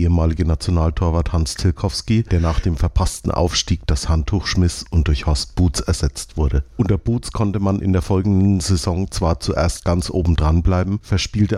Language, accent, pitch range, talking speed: German, German, 80-95 Hz, 170 wpm